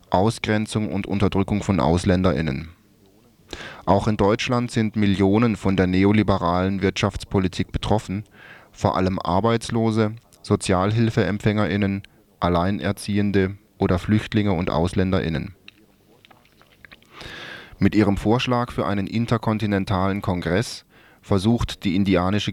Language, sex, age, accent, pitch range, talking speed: German, male, 20-39, German, 90-105 Hz, 90 wpm